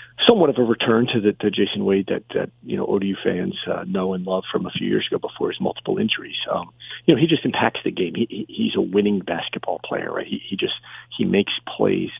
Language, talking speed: English, 245 wpm